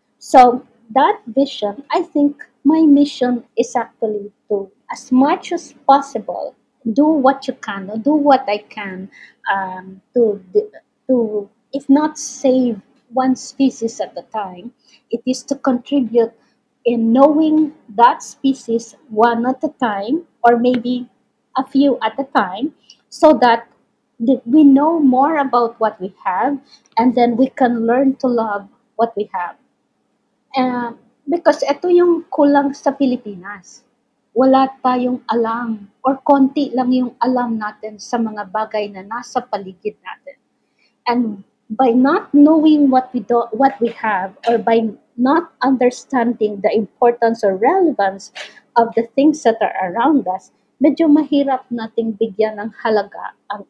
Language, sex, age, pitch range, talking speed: English, female, 20-39, 225-275 Hz, 140 wpm